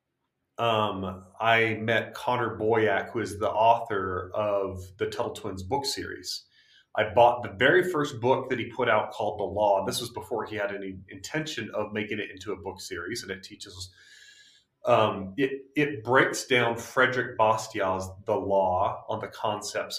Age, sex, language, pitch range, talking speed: 30-49, male, English, 105-125 Hz, 170 wpm